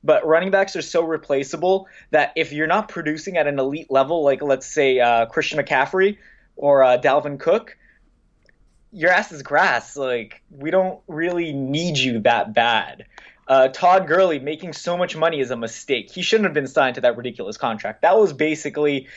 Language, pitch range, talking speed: English, 135-165 Hz, 185 wpm